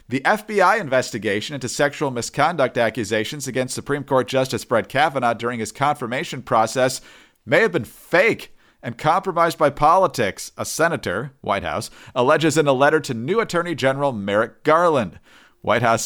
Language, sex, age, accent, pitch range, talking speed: English, male, 50-69, American, 110-145 Hz, 155 wpm